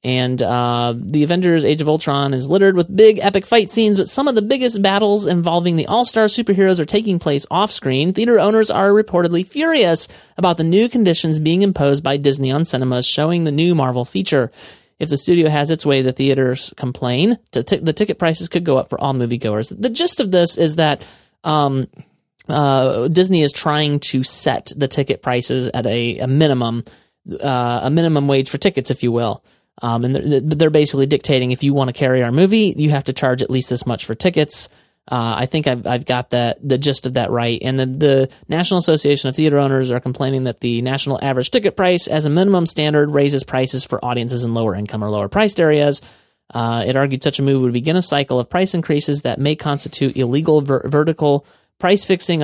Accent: American